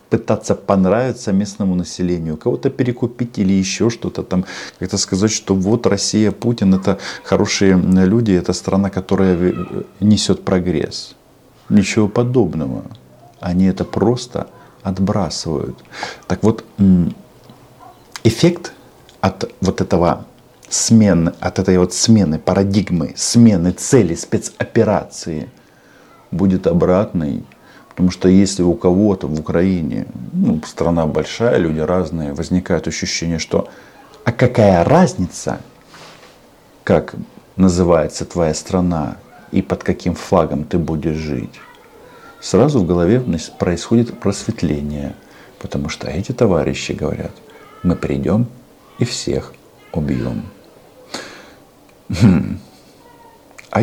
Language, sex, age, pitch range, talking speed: Russian, male, 50-69, 85-105 Hz, 105 wpm